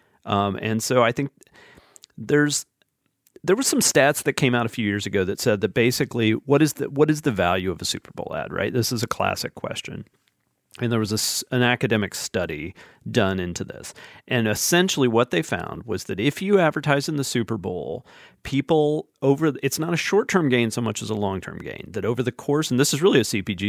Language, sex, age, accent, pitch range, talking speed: English, male, 40-59, American, 105-135 Hz, 220 wpm